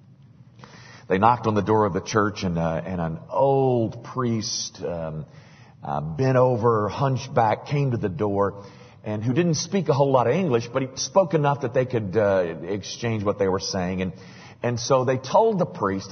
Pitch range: 110-155 Hz